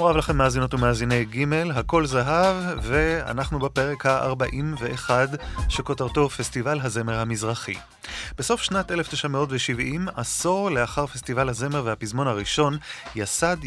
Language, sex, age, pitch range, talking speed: Hebrew, male, 30-49, 115-150 Hz, 110 wpm